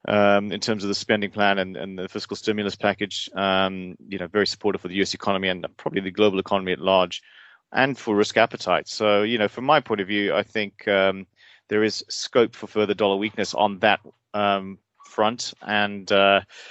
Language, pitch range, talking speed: English, 95-110 Hz, 200 wpm